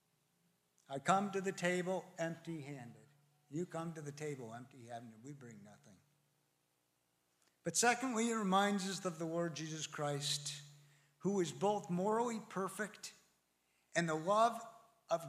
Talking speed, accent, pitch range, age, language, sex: 135 wpm, American, 125-195 Hz, 60-79, English, male